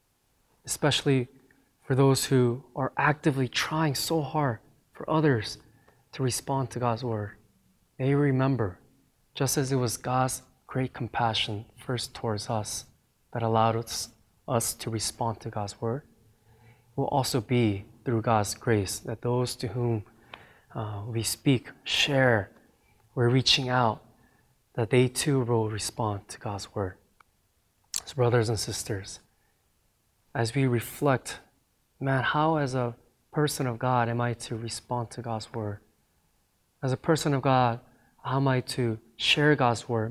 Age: 20-39